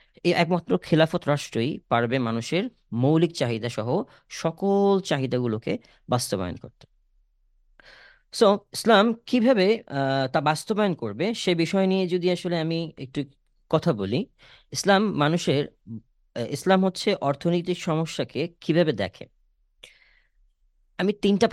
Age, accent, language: 30-49, native, Bengali